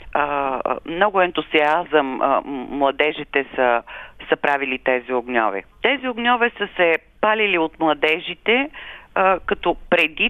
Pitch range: 150-200 Hz